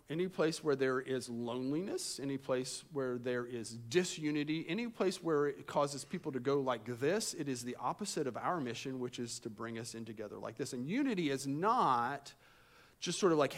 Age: 40-59